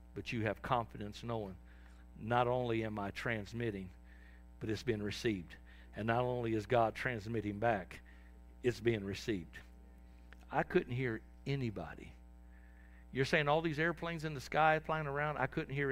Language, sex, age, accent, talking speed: English, male, 60-79, American, 155 wpm